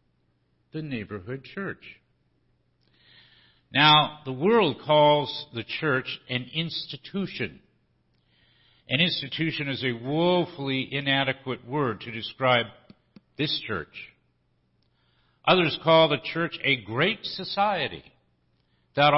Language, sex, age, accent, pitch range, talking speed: English, male, 60-79, American, 110-155 Hz, 95 wpm